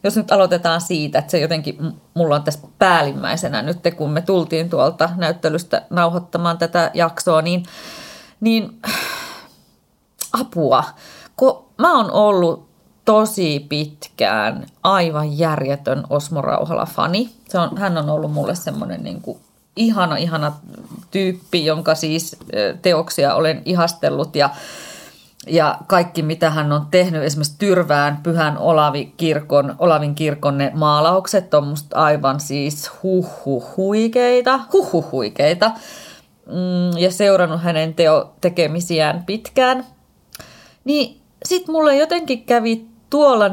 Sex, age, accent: female, 30-49, native